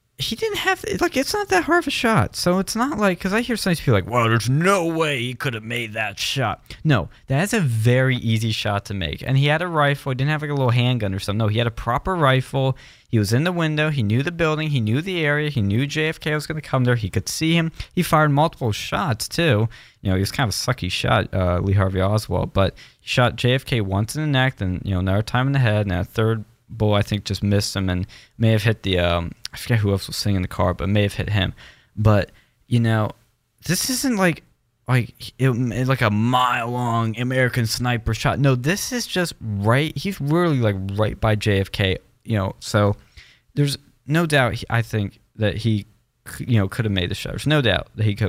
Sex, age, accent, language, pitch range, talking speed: male, 20-39, American, English, 105-150 Hz, 245 wpm